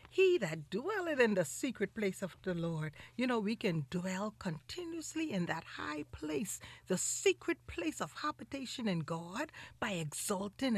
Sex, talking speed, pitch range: female, 160 wpm, 190-305 Hz